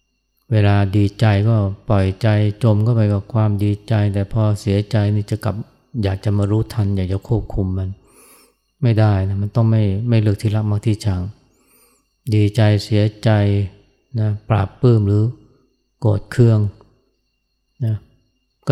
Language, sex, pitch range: Thai, male, 100-115 Hz